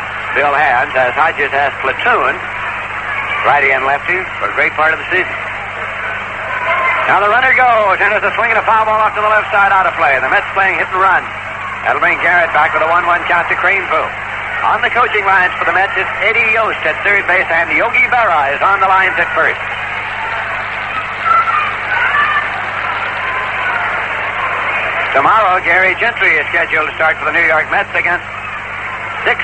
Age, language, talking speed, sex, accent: 60-79, English, 180 wpm, male, American